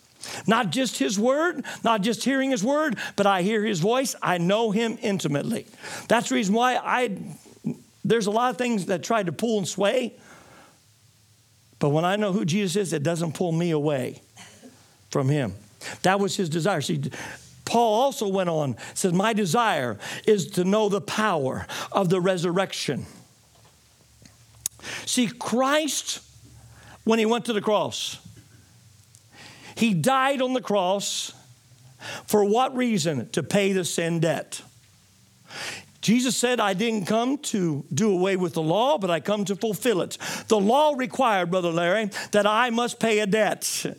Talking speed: 160 wpm